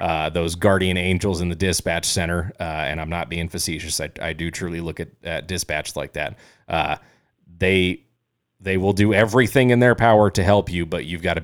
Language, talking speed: English, 210 wpm